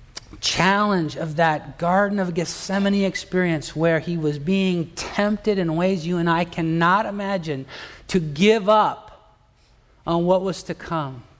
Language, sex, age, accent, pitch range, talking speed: English, male, 50-69, American, 155-200 Hz, 140 wpm